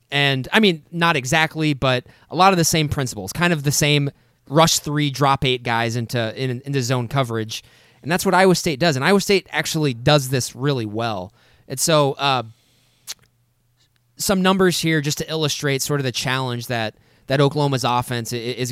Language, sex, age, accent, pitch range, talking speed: English, male, 20-39, American, 120-145 Hz, 185 wpm